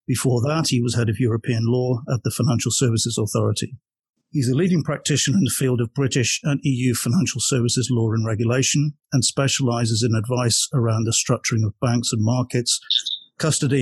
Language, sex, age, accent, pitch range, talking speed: English, male, 50-69, British, 115-135 Hz, 180 wpm